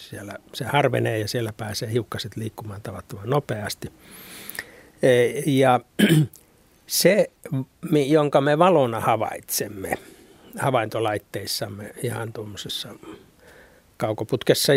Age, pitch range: 60-79, 115-150 Hz